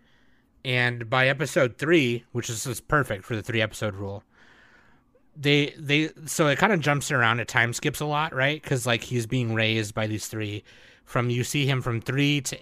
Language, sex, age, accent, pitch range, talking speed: English, male, 30-49, American, 110-130 Hz, 200 wpm